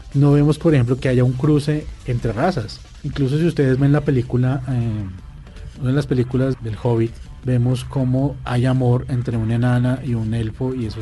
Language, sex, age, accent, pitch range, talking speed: Spanish, male, 30-49, Colombian, 120-145 Hz, 190 wpm